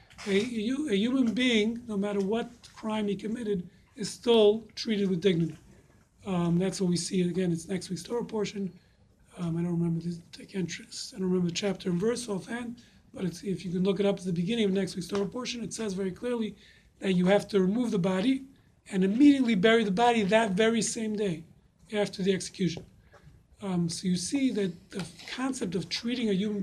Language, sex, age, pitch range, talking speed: English, male, 40-59, 185-215 Hz, 190 wpm